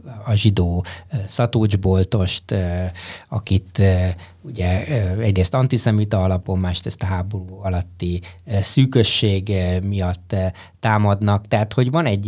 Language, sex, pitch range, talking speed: Hungarian, male, 95-115 Hz, 100 wpm